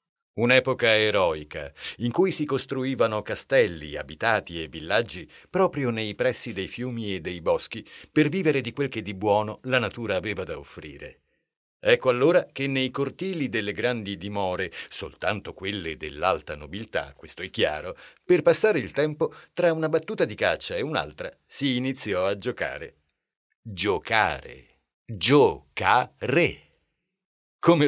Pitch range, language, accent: 105-160 Hz, Italian, native